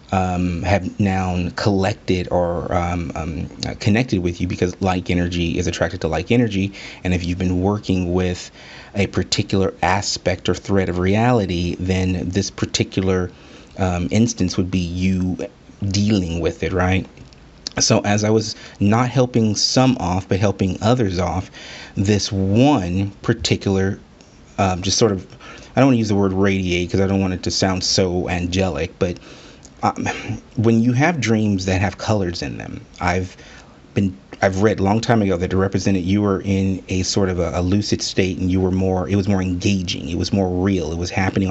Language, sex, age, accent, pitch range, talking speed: English, male, 30-49, American, 90-100 Hz, 180 wpm